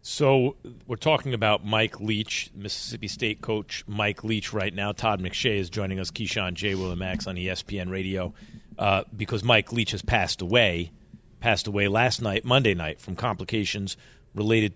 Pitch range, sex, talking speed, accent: 100-140 Hz, male, 170 wpm, American